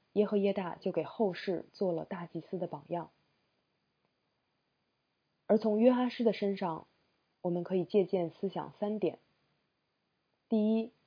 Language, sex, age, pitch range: Chinese, female, 20-39, 170-210 Hz